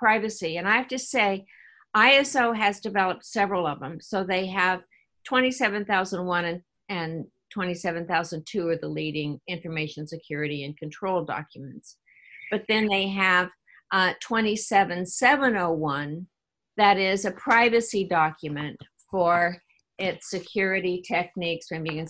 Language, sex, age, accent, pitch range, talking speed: English, female, 50-69, American, 165-220 Hz, 120 wpm